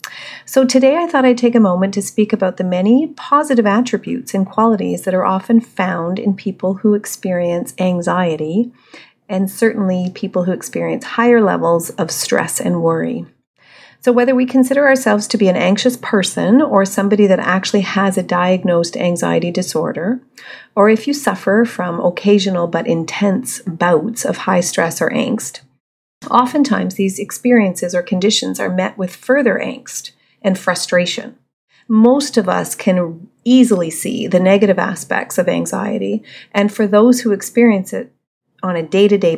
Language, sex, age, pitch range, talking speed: English, female, 40-59, 180-235 Hz, 155 wpm